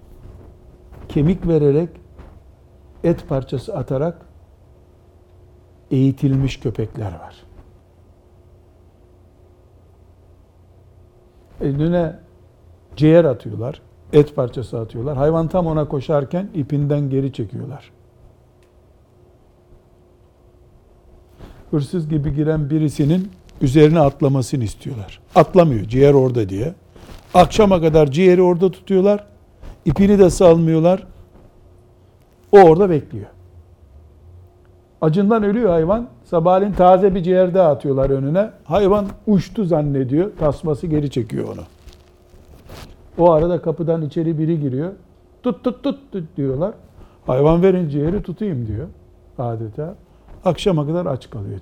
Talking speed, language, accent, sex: 95 wpm, Turkish, native, male